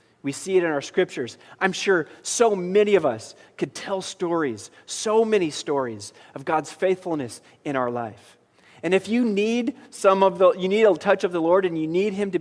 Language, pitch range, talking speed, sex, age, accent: English, 125-180 Hz, 210 wpm, male, 40-59, American